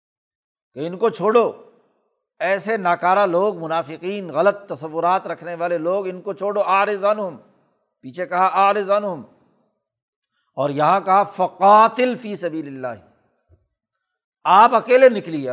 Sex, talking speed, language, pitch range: male, 125 wpm, Urdu, 170-220 Hz